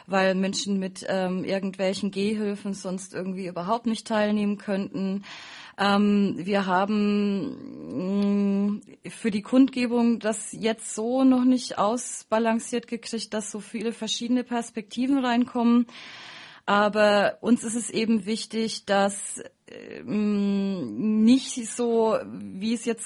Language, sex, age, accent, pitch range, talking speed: German, female, 30-49, German, 205-240 Hz, 115 wpm